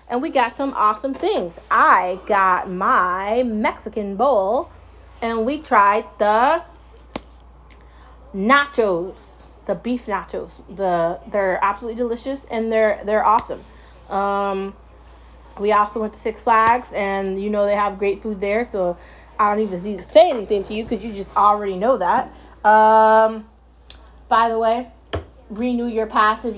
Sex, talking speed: female, 150 wpm